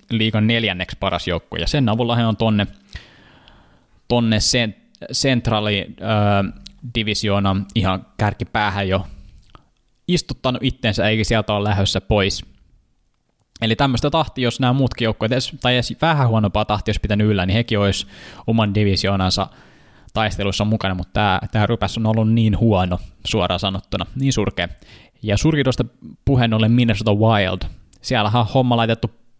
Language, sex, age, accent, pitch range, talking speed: Finnish, male, 20-39, native, 100-125 Hz, 135 wpm